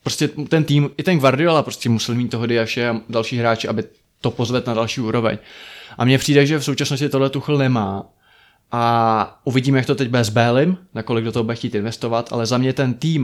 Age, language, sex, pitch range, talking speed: 20-39, Czech, male, 115-140 Hz, 220 wpm